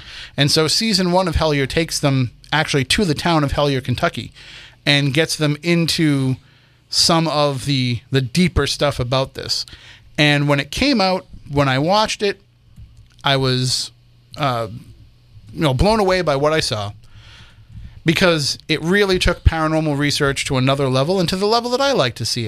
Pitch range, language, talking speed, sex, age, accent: 125-160 Hz, English, 175 wpm, male, 30-49, American